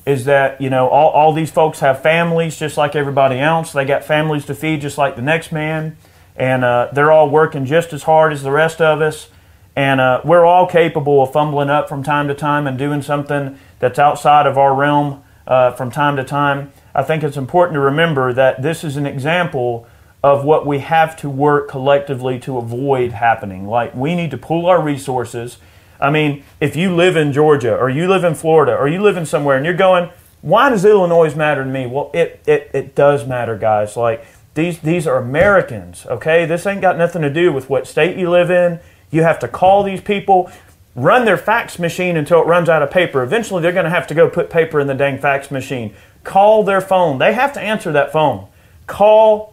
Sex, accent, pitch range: male, American, 135-170 Hz